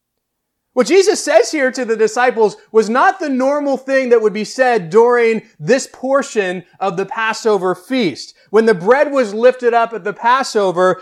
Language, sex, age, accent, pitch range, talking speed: English, male, 30-49, American, 190-235 Hz, 175 wpm